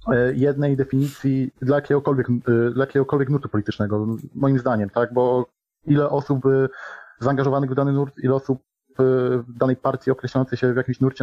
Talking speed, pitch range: 145 wpm, 125-135 Hz